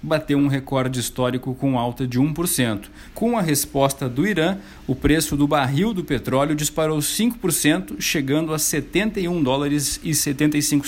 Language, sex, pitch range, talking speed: Portuguese, male, 130-165 Hz, 150 wpm